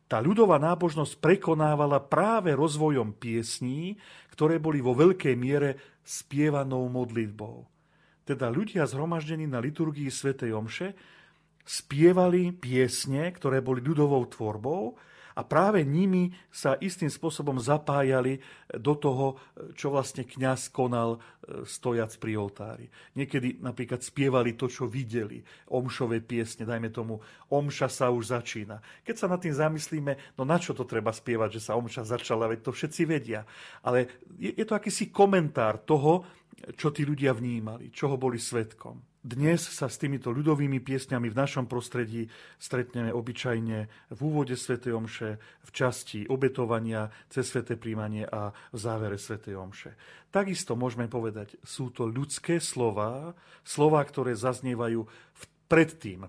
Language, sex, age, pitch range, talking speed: Slovak, male, 40-59, 115-155 Hz, 135 wpm